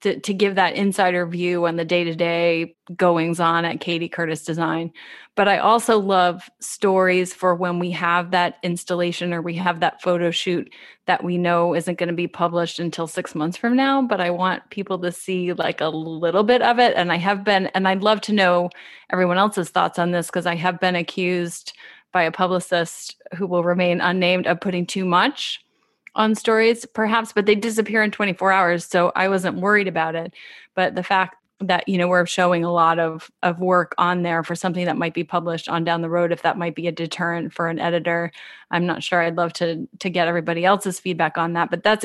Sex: female